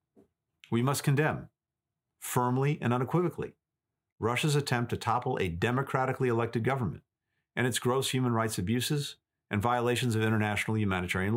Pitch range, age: 110-135 Hz, 50-69